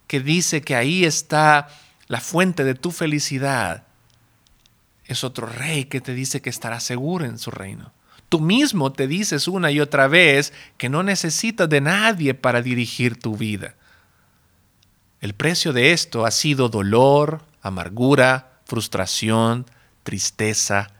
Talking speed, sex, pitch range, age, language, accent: 140 wpm, male, 115-155 Hz, 40-59, Spanish, Mexican